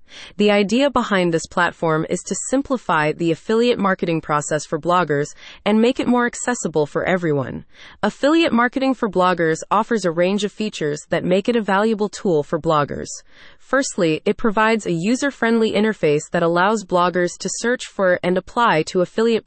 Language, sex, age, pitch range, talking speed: English, female, 20-39, 170-230 Hz, 165 wpm